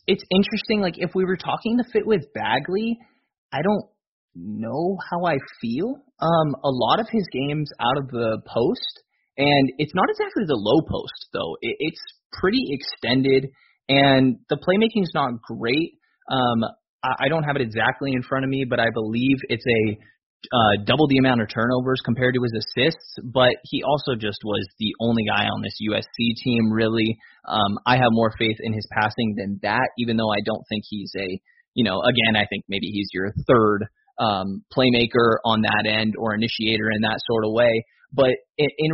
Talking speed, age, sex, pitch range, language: 190 wpm, 20-39, male, 110-155 Hz, English